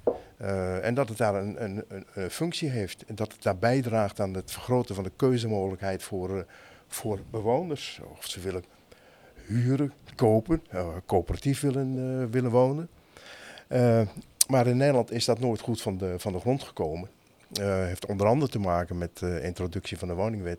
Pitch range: 90-115 Hz